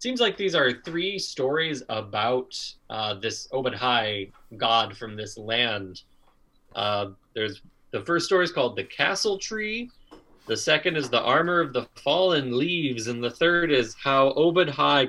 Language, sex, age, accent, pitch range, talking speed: English, male, 20-39, American, 115-165 Hz, 155 wpm